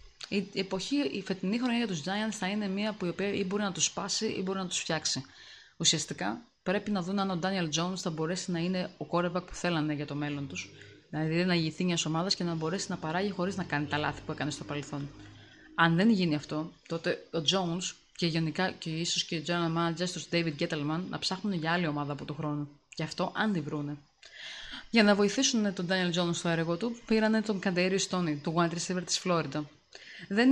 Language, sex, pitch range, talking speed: Greek, female, 160-205 Hz, 205 wpm